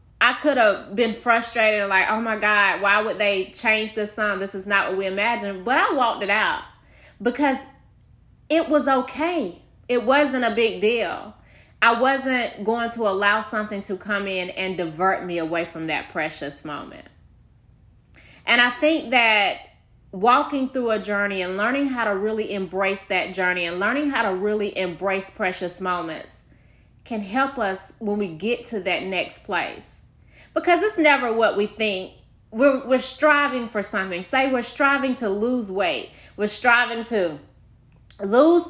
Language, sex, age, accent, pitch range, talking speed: English, female, 20-39, American, 190-250 Hz, 165 wpm